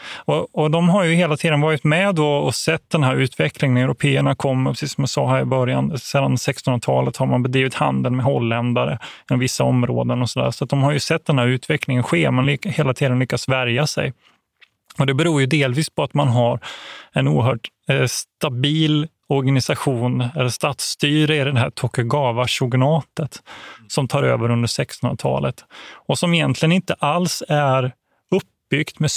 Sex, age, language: male, 30-49, Swedish